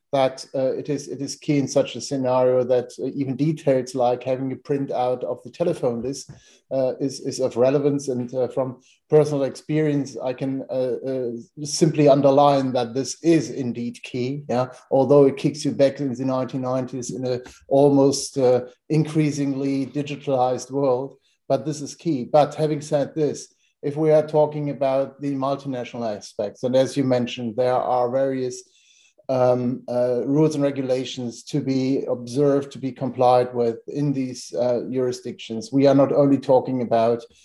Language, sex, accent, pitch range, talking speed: German, male, German, 125-140 Hz, 170 wpm